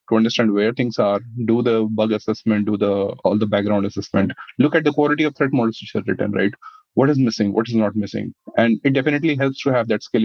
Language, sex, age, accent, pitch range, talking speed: English, male, 30-49, Indian, 110-140 Hz, 240 wpm